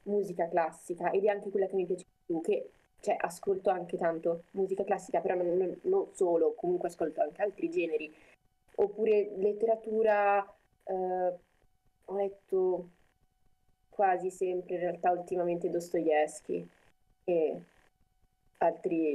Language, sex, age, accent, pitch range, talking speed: Italian, female, 20-39, native, 175-215 Hz, 125 wpm